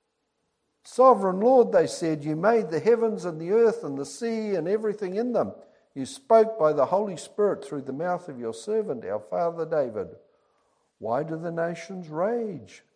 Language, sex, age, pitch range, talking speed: English, male, 60-79, 130-205 Hz, 175 wpm